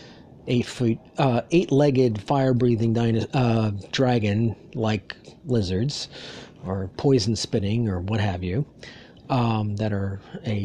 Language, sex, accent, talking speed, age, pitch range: English, male, American, 105 wpm, 40-59, 110-145 Hz